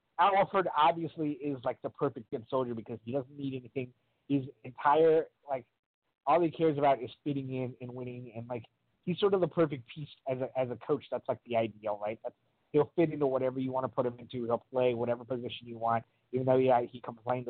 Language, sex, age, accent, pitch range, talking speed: English, male, 20-39, American, 120-150 Hz, 225 wpm